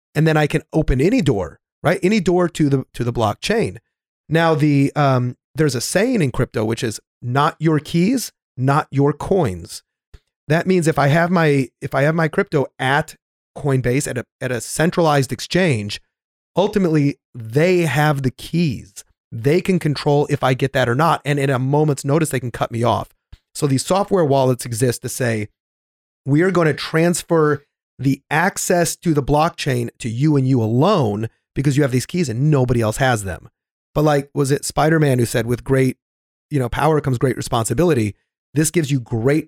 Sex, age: male, 30-49